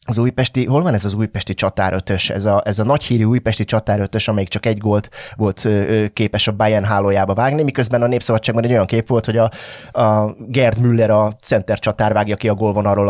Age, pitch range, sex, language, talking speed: 30-49, 105-130 Hz, male, Hungarian, 205 wpm